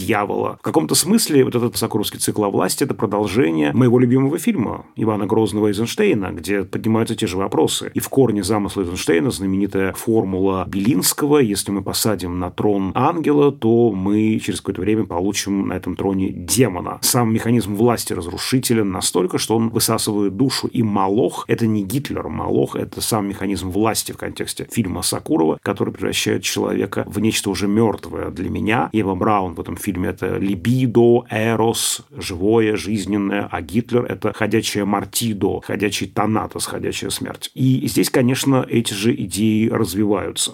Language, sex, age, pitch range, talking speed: Russian, male, 30-49, 100-125 Hz, 155 wpm